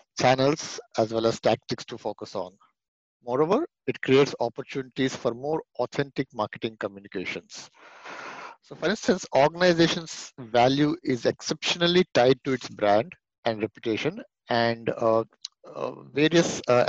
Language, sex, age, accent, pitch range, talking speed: English, male, 50-69, Indian, 115-145 Hz, 125 wpm